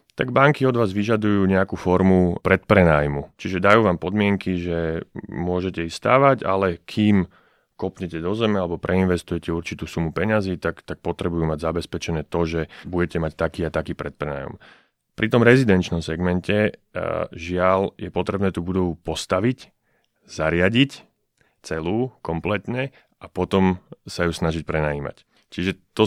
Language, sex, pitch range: Slovak, male, 85-100 Hz